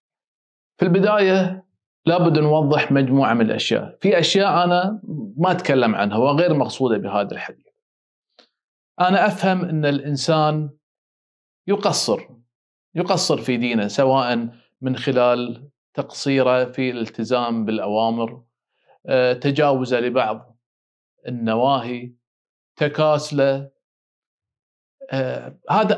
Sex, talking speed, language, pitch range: male, 85 wpm, Arabic, 125-170 Hz